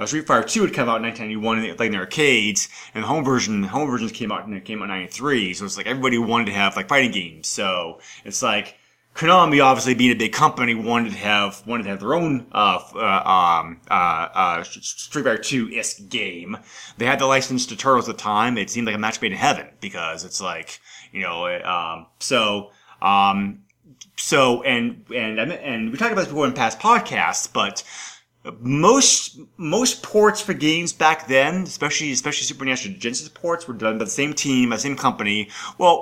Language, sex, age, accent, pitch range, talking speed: English, male, 20-39, American, 105-155 Hz, 205 wpm